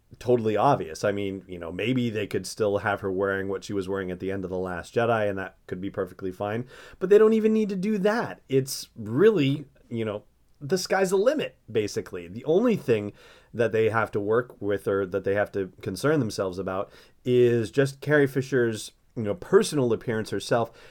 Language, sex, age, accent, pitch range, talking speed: English, male, 30-49, American, 95-125 Hz, 210 wpm